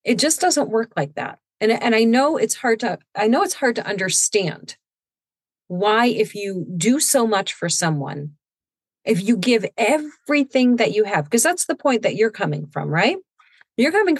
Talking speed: 190 wpm